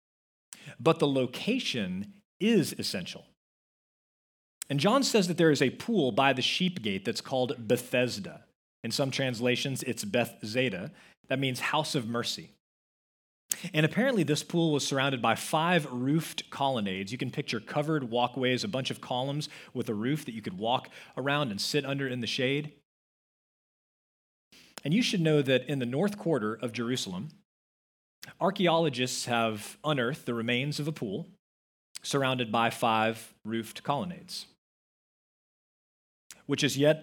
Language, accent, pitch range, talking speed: English, American, 125-155 Hz, 145 wpm